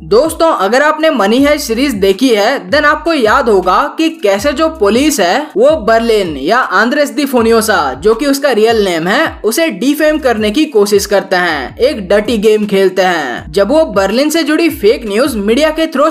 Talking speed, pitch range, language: 190 wpm, 205-300 Hz, Hindi